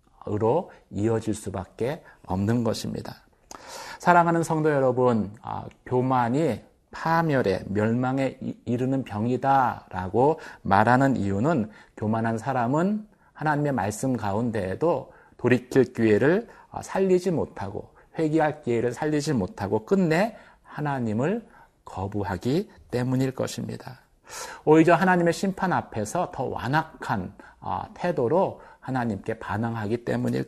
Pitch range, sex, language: 110-140 Hz, male, Korean